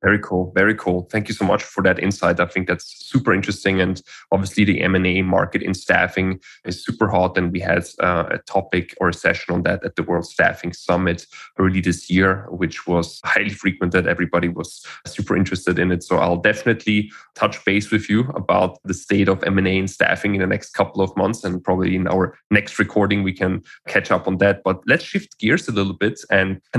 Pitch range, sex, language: 95-110 Hz, male, English